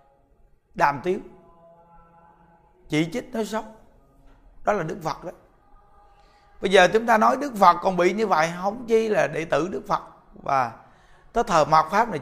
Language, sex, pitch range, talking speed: Vietnamese, male, 170-215 Hz, 170 wpm